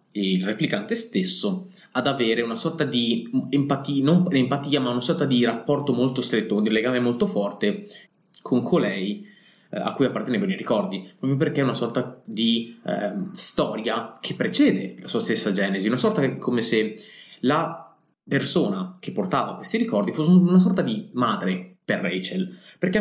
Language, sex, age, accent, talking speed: Italian, male, 20-39, native, 160 wpm